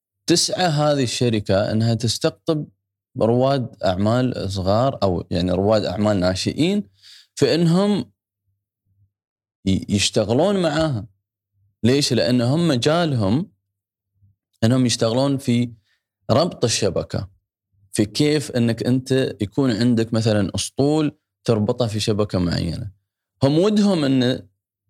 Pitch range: 100-130 Hz